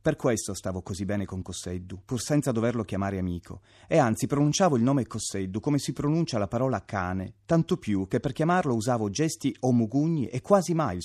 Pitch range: 95-130 Hz